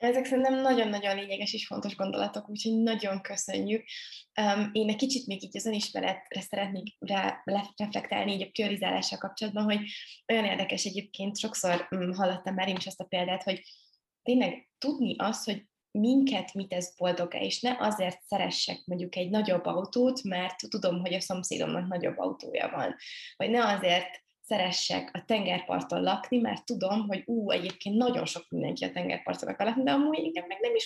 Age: 20-39